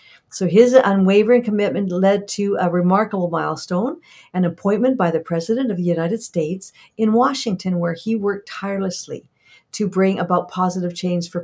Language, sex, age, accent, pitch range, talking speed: English, female, 50-69, American, 175-205 Hz, 155 wpm